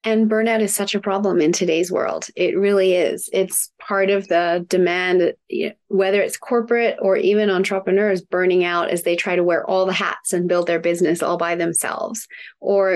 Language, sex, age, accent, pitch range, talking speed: English, female, 30-49, American, 175-205 Hz, 190 wpm